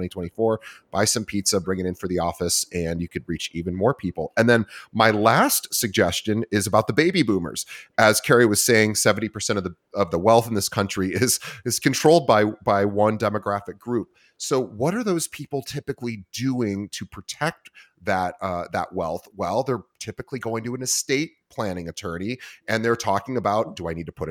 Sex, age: male, 30-49